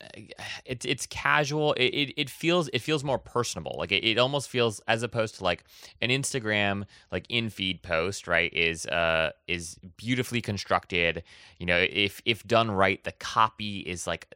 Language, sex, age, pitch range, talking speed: English, male, 20-39, 85-110 Hz, 165 wpm